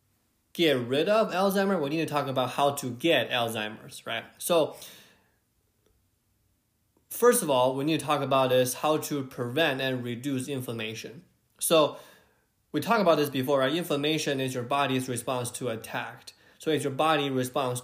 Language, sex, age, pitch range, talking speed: English, male, 20-39, 120-145 Hz, 165 wpm